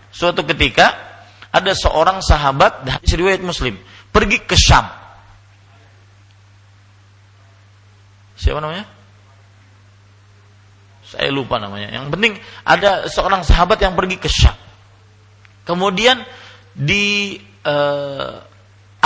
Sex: male